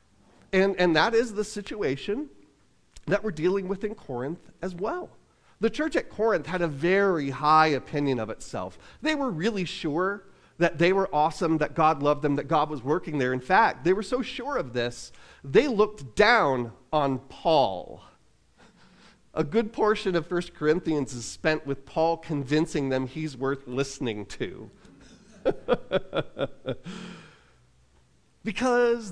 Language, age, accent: English, 40-59, American